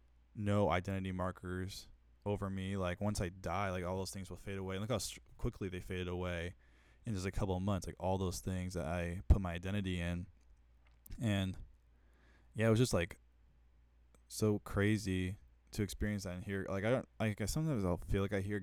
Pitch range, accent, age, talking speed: 80-100 Hz, American, 20-39, 205 wpm